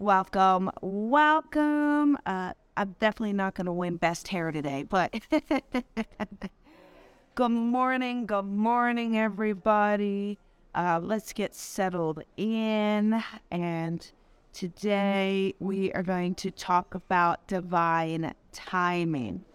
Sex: female